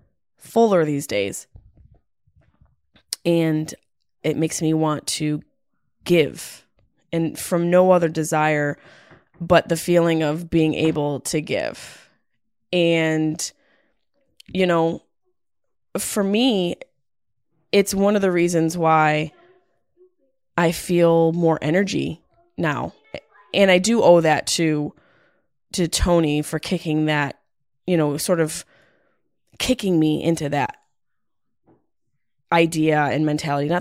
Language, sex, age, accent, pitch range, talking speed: English, female, 20-39, American, 150-175 Hz, 110 wpm